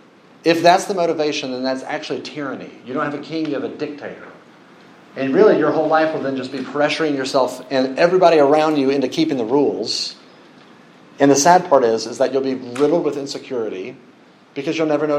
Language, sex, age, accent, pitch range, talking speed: English, male, 40-59, American, 125-160 Hz, 205 wpm